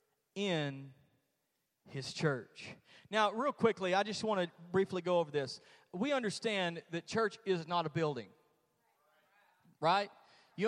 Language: English